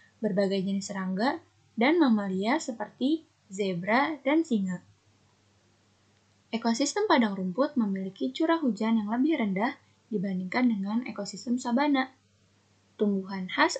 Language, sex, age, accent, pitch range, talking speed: Indonesian, female, 10-29, native, 195-270 Hz, 105 wpm